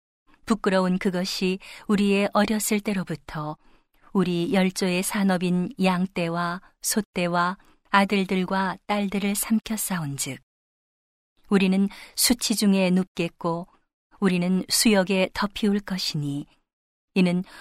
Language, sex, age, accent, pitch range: Korean, female, 40-59, native, 175-200 Hz